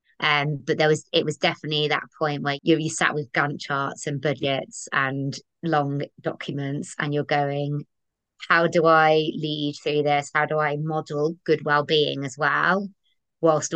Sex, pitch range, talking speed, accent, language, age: female, 145-155 Hz, 165 wpm, British, English, 20-39